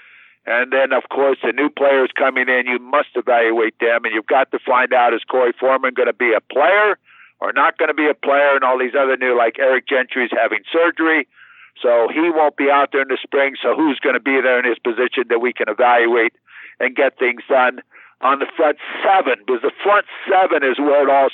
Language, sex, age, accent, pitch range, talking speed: English, male, 50-69, American, 130-170 Hz, 230 wpm